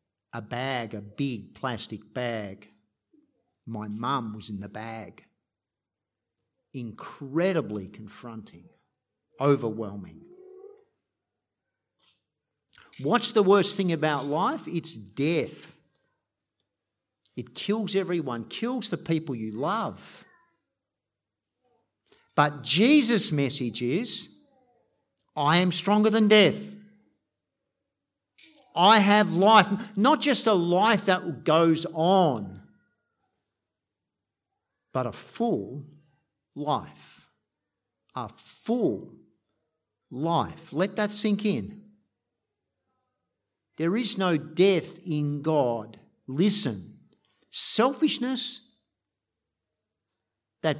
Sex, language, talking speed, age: male, English, 85 wpm, 50-69